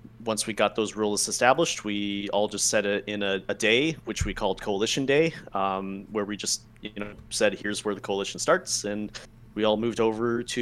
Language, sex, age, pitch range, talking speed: English, male, 30-49, 100-115 Hz, 215 wpm